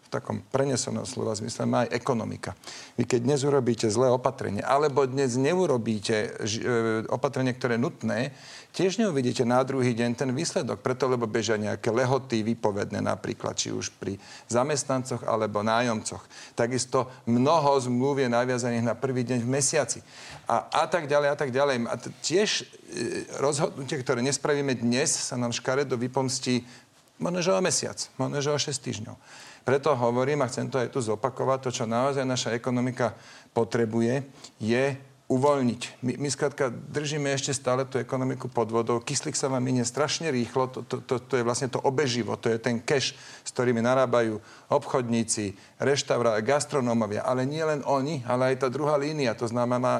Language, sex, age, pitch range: Slovak, male, 40-59, 120-135 Hz